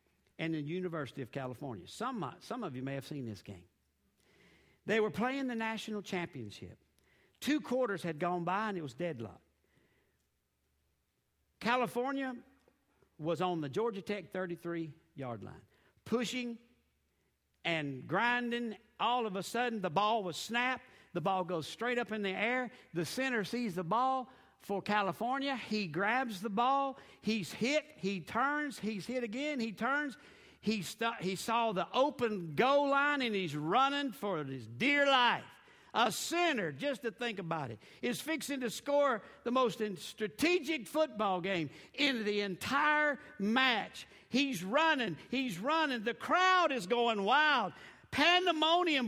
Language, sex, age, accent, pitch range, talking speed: English, male, 60-79, American, 185-265 Hz, 145 wpm